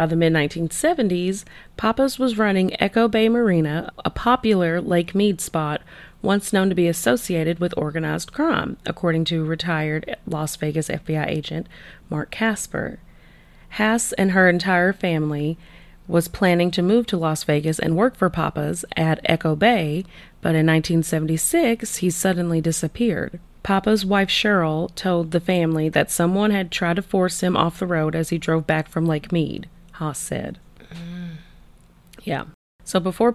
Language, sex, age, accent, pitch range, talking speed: English, female, 30-49, American, 160-195 Hz, 150 wpm